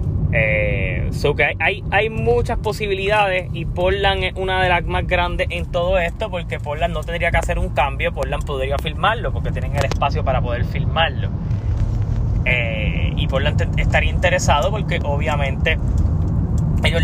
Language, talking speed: Spanish, 160 wpm